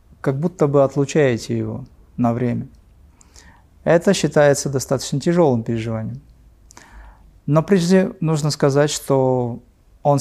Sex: male